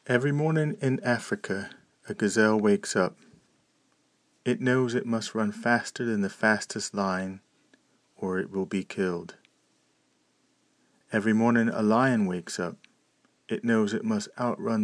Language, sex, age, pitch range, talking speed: English, male, 30-49, 95-125 Hz, 140 wpm